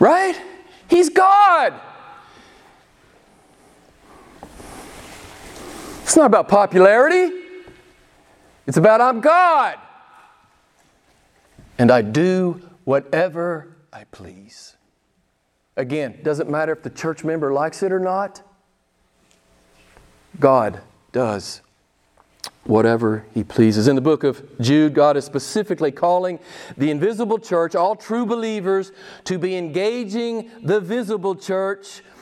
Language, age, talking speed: English, 40-59, 100 wpm